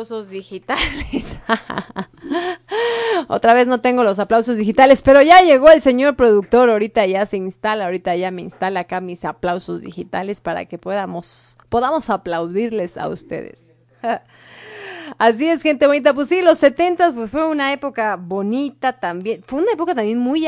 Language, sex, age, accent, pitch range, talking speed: Spanish, female, 30-49, Mexican, 185-235 Hz, 155 wpm